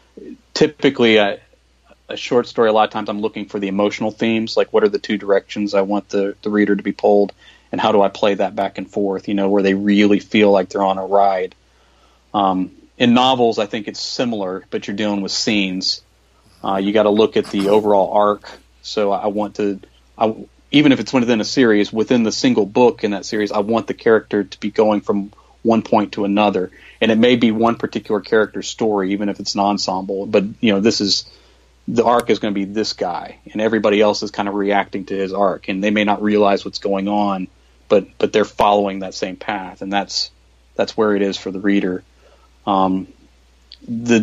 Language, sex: English, male